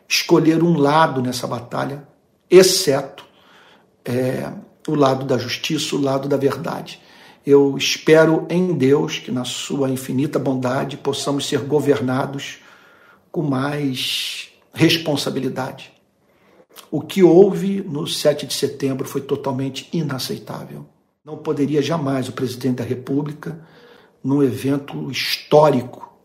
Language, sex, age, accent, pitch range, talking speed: Portuguese, male, 60-79, Brazilian, 135-155 Hz, 110 wpm